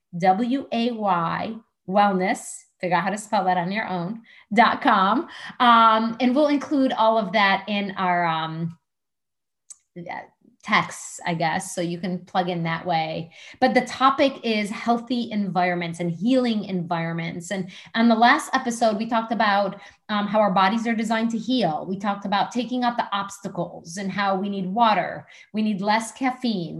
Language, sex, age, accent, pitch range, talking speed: English, female, 30-49, American, 185-245 Hz, 165 wpm